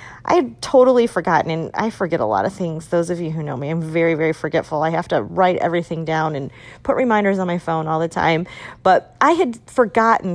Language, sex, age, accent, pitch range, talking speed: English, female, 40-59, American, 165-210 Hz, 230 wpm